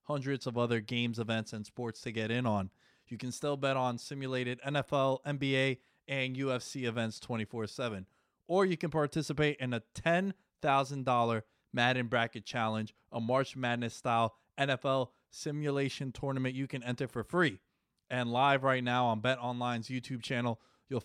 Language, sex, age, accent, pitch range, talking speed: English, male, 20-39, American, 115-135 Hz, 160 wpm